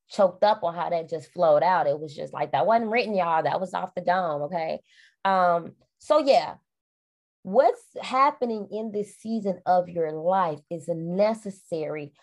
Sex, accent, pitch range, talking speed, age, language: female, American, 170-215 Hz, 170 wpm, 20-39, English